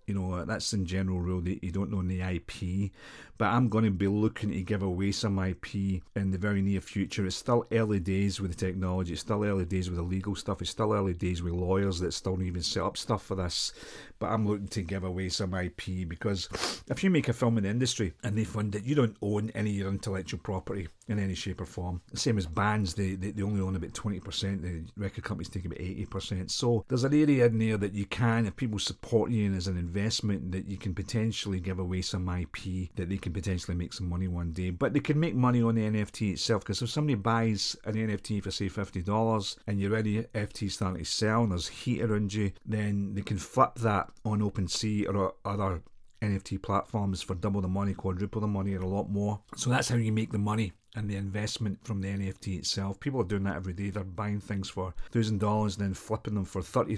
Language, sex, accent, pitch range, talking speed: English, male, British, 95-110 Hz, 235 wpm